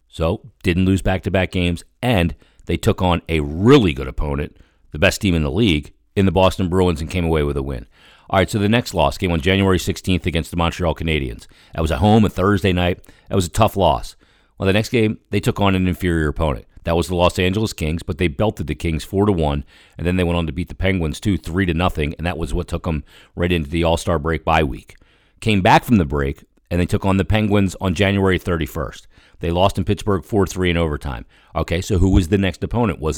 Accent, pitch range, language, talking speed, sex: American, 80-100 Hz, English, 240 wpm, male